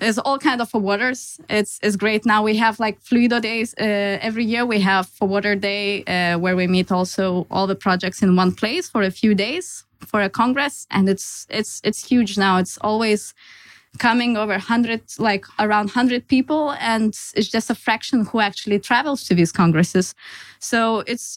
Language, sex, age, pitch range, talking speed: English, female, 20-39, 195-240 Hz, 195 wpm